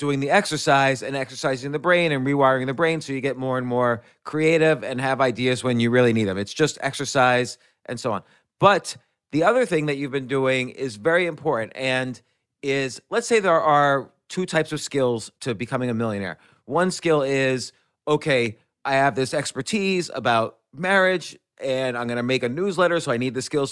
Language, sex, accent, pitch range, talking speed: English, male, American, 130-160 Hz, 200 wpm